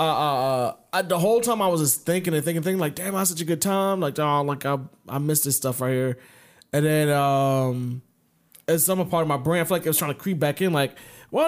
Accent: American